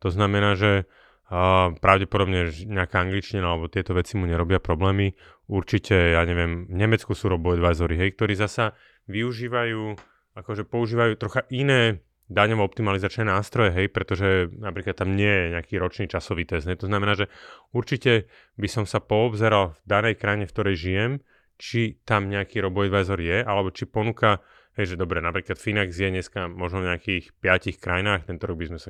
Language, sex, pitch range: Slovak, male, 90-105 Hz